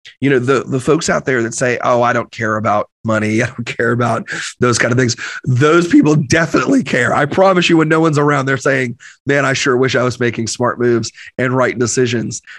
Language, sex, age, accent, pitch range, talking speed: English, male, 30-49, American, 120-140 Hz, 230 wpm